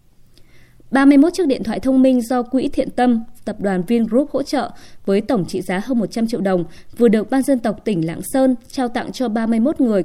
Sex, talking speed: female, 215 wpm